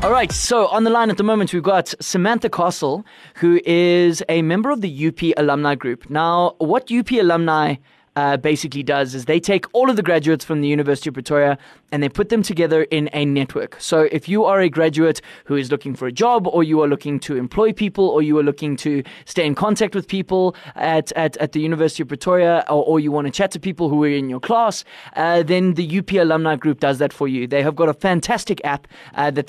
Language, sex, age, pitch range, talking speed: English, male, 20-39, 150-190 Hz, 235 wpm